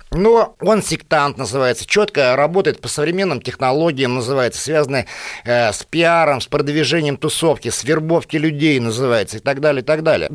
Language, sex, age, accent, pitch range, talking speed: Russian, male, 50-69, native, 135-175 Hz, 155 wpm